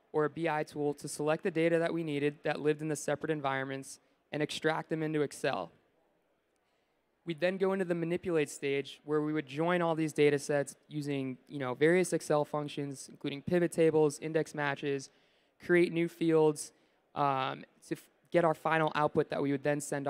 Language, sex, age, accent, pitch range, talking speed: English, male, 20-39, American, 145-165 Hz, 180 wpm